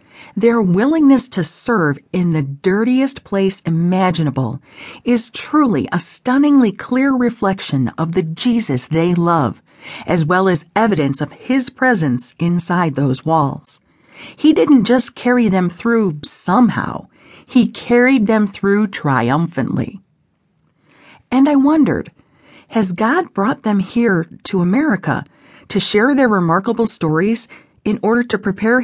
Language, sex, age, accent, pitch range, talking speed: English, female, 40-59, American, 155-235 Hz, 125 wpm